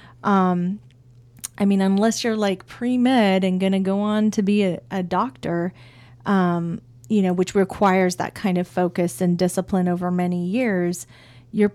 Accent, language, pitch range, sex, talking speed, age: American, English, 175-205 Hz, female, 165 wpm, 40-59